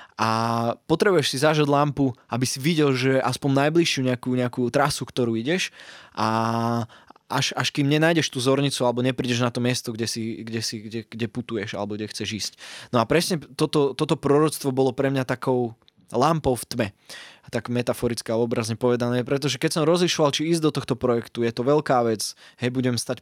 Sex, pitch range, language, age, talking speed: male, 115-140 Hz, Slovak, 20-39, 185 wpm